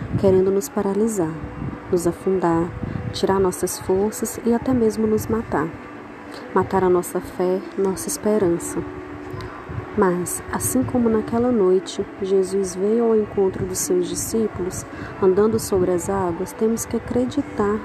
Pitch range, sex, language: 185-225 Hz, female, Portuguese